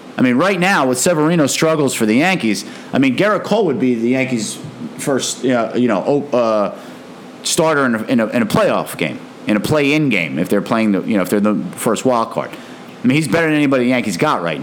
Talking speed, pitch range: 240 wpm, 125-175 Hz